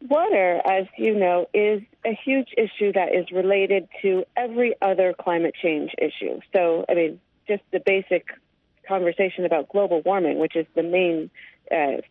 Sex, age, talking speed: female, 40-59, 160 wpm